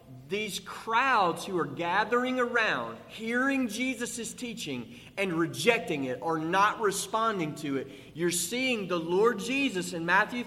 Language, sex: English, male